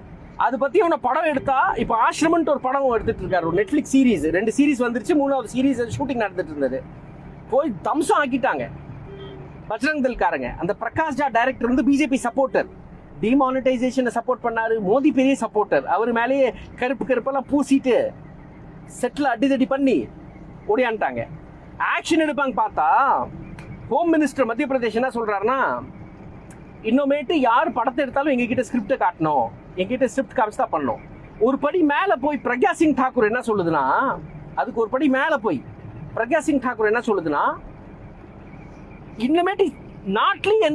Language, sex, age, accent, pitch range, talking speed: Tamil, male, 30-49, native, 235-305 Hz, 105 wpm